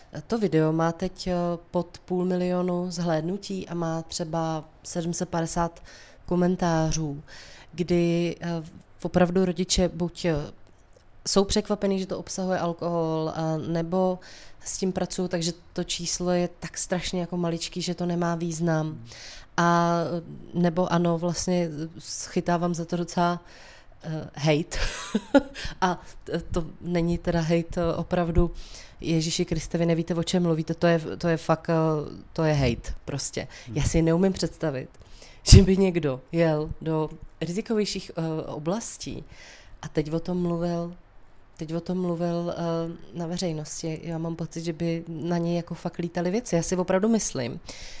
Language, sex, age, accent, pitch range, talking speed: Czech, female, 20-39, native, 160-180 Hz, 125 wpm